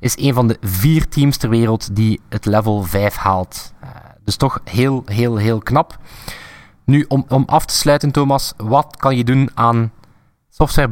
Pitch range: 115-145 Hz